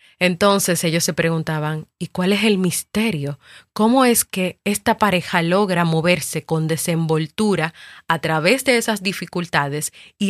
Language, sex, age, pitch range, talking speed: Spanish, female, 30-49, 160-200 Hz, 140 wpm